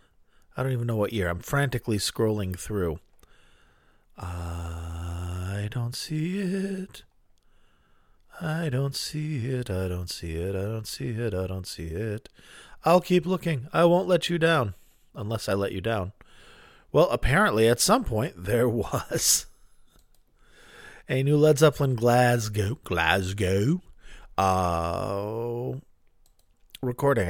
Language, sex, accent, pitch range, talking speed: English, male, American, 95-135 Hz, 130 wpm